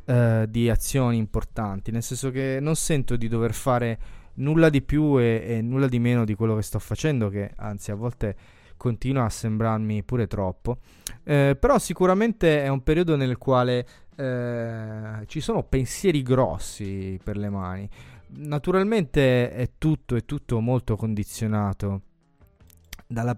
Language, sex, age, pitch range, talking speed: Italian, male, 20-39, 105-135 Hz, 145 wpm